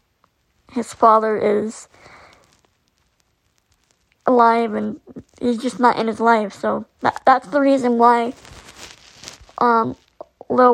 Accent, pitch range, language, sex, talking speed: American, 225-250 Hz, English, male, 105 wpm